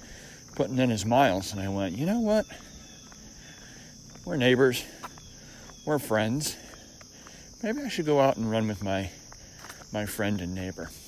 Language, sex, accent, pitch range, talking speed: English, male, American, 90-120 Hz, 145 wpm